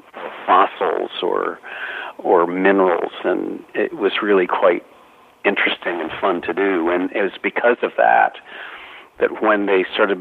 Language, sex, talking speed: English, male, 140 wpm